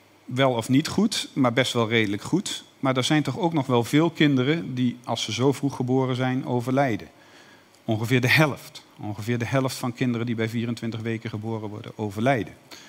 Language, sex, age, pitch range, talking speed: Dutch, male, 50-69, 115-145 Hz, 190 wpm